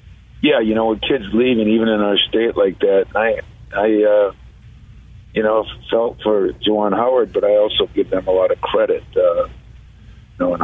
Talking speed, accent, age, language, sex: 180 wpm, American, 50-69, English, male